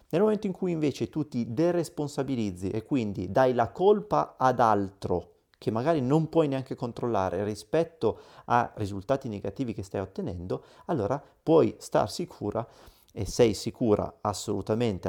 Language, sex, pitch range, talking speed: Italian, male, 100-130 Hz, 145 wpm